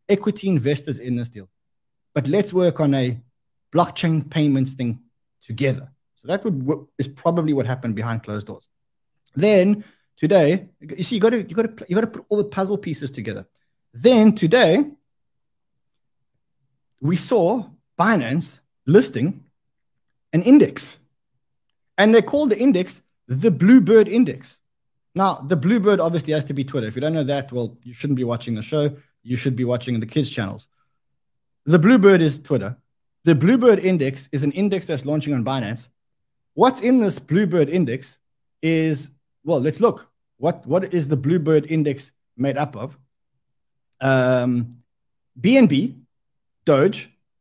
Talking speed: 155 wpm